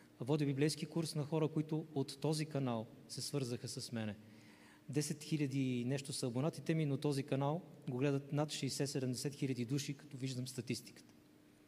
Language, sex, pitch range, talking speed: Bulgarian, male, 125-160 Hz, 160 wpm